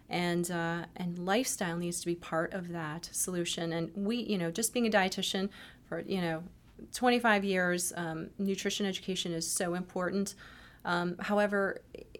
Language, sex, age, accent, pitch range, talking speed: English, female, 30-49, American, 170-200 Hz, 160 wpm